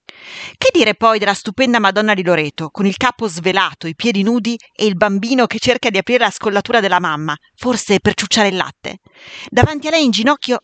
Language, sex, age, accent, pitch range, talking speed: Italian, female, 40-59, native, 180-245 Hz, 205 wpm